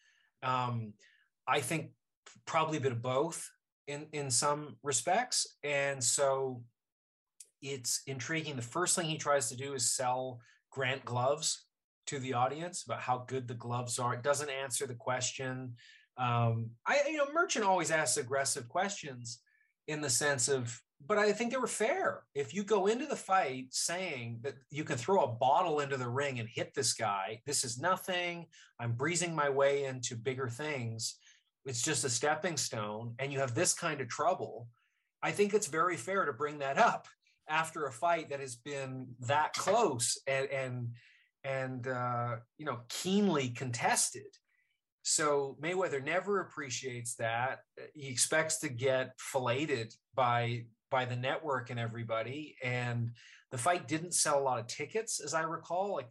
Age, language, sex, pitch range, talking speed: 30-49, English, male, 125-160 Hz, 165 wpm